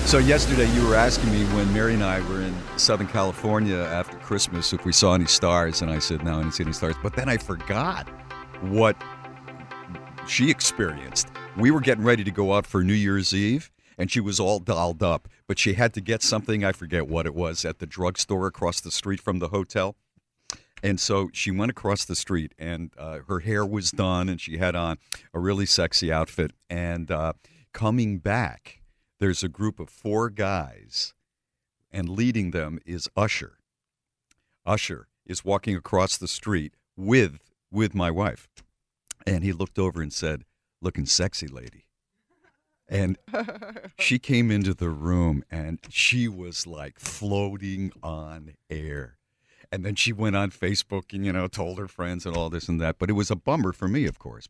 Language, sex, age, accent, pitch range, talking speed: English, male, 50-69, American, 85-105 Hz, 185 wpm